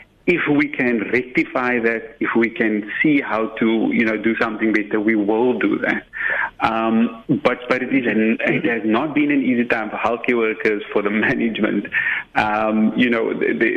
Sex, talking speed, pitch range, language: male, 190 wpm, 110-160 Hz, English